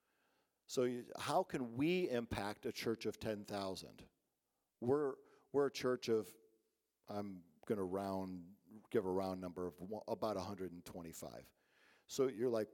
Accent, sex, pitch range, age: American, male, 100-125 Hz, 50-69